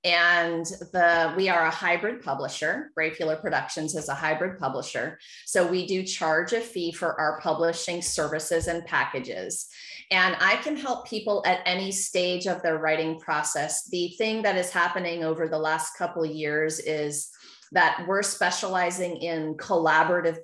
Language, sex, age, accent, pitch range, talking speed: English, female, 30-49, American, 160-190 Hz, 160 wpm